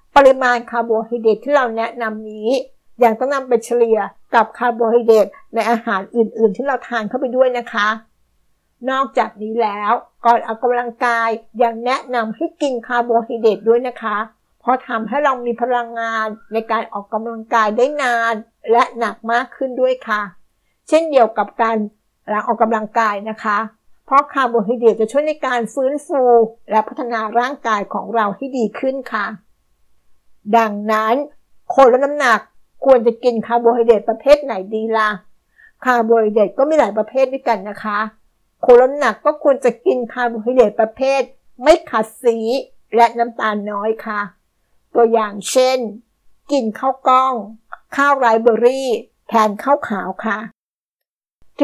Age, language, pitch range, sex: 60-79, Thai, 220-260 Hz, female